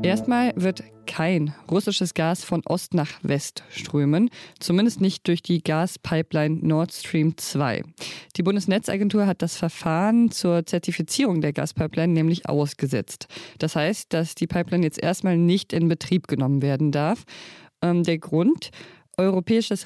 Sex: female